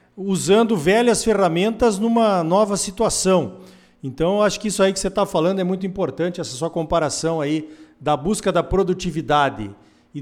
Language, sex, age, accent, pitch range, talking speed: Portuguese, male, 50-69, Brazilian, 145-190 Hz, 165 wpm